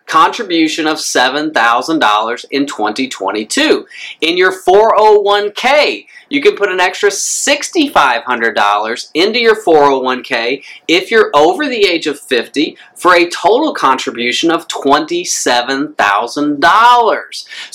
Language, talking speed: English, 100 wpm